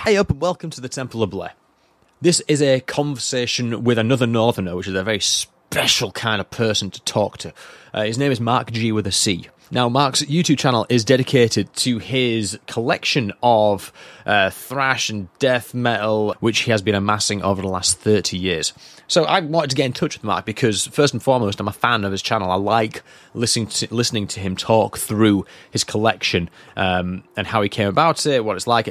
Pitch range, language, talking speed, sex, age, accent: 105-130 Hz, English, 210 wpm, male, 20-39, British